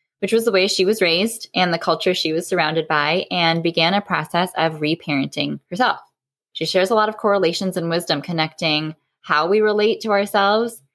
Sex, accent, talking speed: female, American, 190 wpm